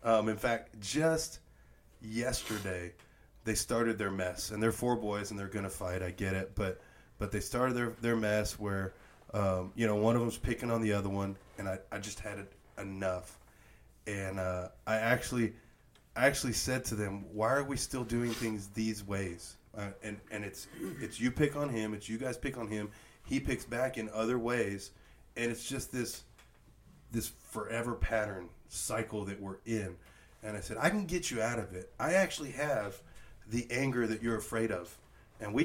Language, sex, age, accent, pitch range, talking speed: English, male, 30-49, American, 100-120 Hz, 195 wpm